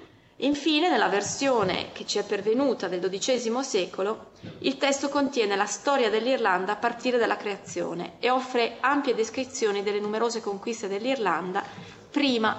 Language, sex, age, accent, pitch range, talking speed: Italian, female, 30-49, native, 195-260 Hz, 140 wpm